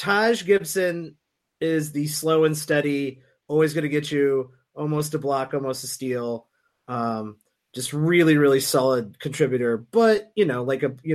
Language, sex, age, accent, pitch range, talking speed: English, male, 30-49, American, 135-195 Hz, 160 wpm